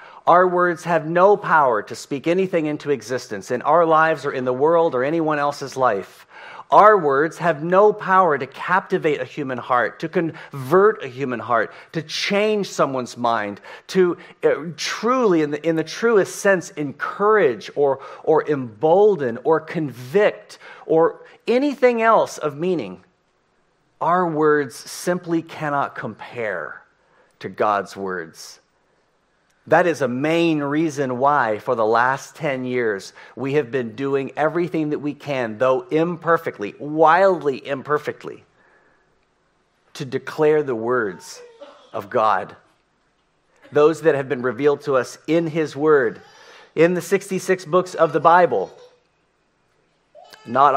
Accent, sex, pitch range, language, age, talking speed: American, male, 140-185 Hz, English, 40-59, 135 wpm